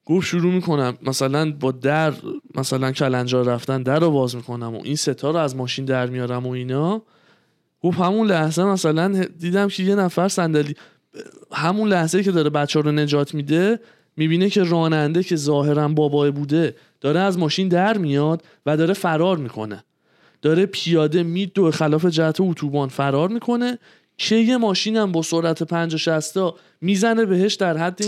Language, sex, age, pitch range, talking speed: Persian, male, 20-39, 140-185 Hz, 170 wpm